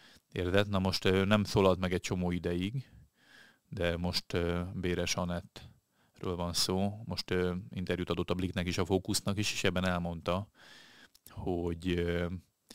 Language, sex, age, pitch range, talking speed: Hungarian, male, 30-49, 90-100 Hz, 125 wpm